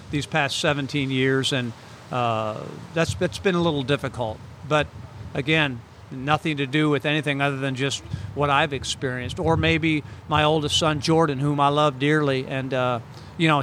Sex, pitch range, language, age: male, 130-155 Hz, English, 50-69